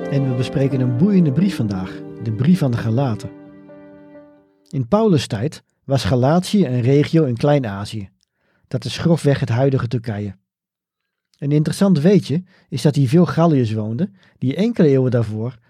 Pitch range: 120-160 Hz